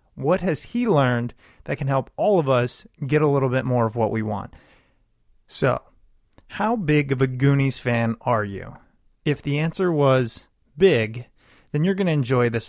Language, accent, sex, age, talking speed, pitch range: English, American, male, 30-49, 185 wpm, 125-190 Hz